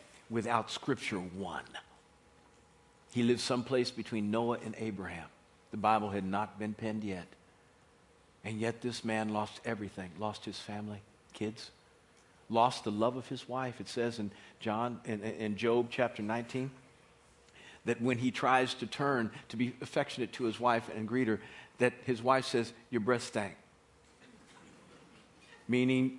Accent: American